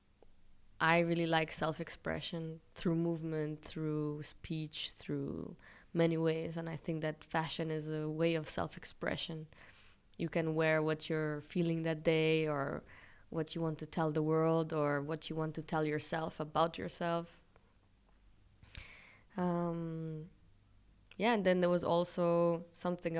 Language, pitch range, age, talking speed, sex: Dutch, 155-175 Hz, 20-39, 140 wpm, female